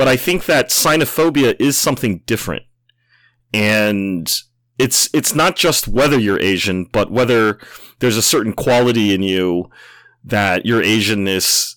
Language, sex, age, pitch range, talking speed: English, male, 30-49, 100-120 Hz, 140 wpm